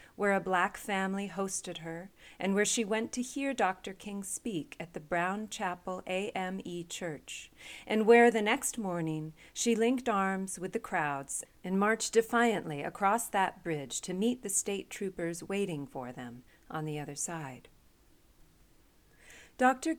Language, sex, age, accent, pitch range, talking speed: English, female, 40-59, American, 160-215 Hz, 155 wpm